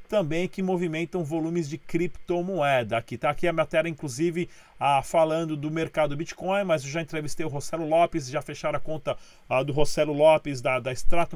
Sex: male